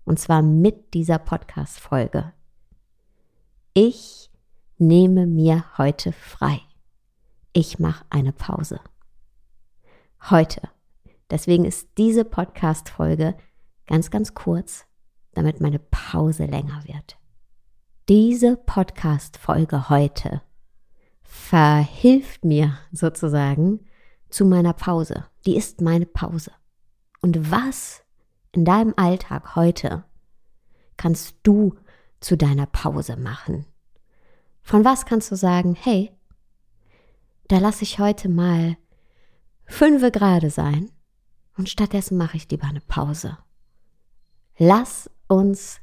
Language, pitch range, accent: German, 145-190 Hz, German